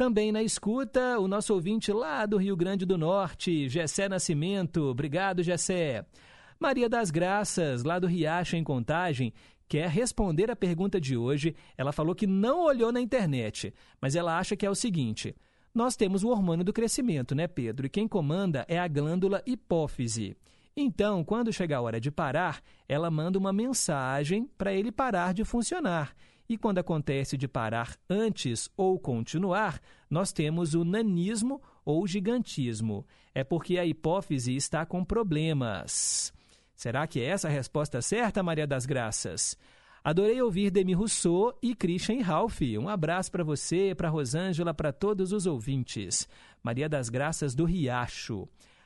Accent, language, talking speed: Brazilian, Portuguese, 155 wpm